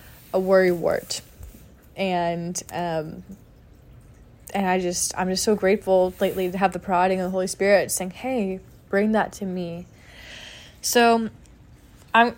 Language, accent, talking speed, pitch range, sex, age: English, American, 140 wpm, 170-205 Hz, female, 20-39